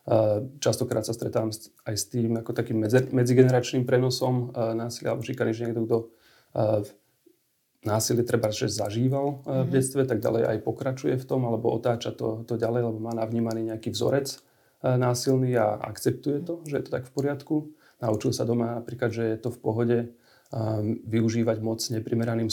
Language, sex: Slovak, male